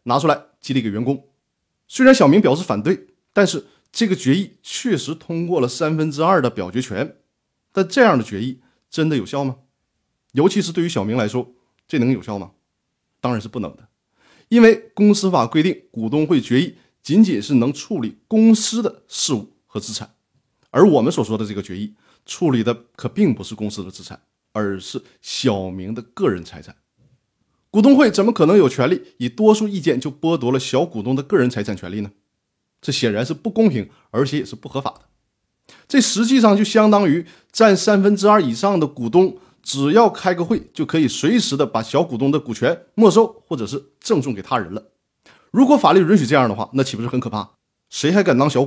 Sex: male